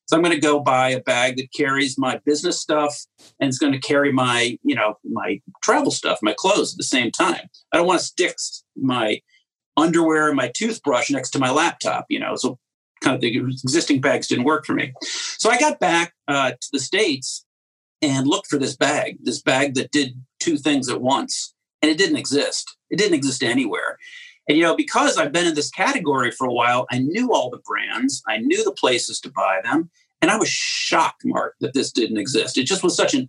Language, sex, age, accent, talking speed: English, male, 50-69, American, 220 wpm